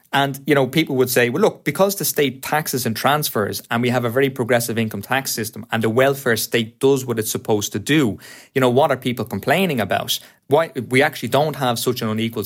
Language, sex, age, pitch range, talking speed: English, male, 30-49, 110-140 Hz, 230 wpm